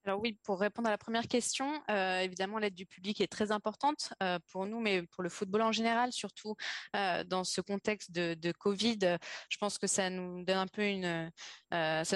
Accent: French